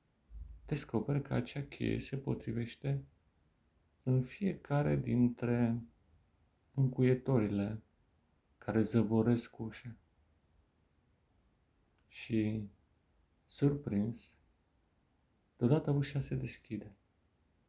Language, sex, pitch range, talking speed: Romanian, male, 95-130 Hz, 65 wpm